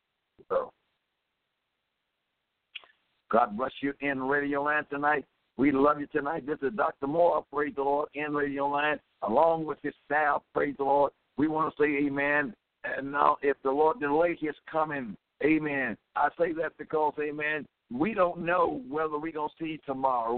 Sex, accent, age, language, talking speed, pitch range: male, American, 60-79, English, 165 wpm, 140-165 Hz